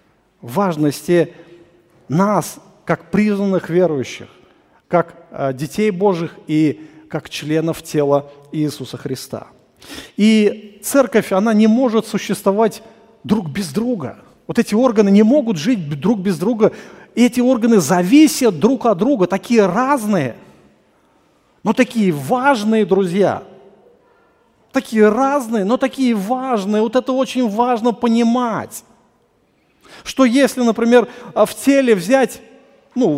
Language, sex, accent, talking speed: Russian, male, native, 110 wpm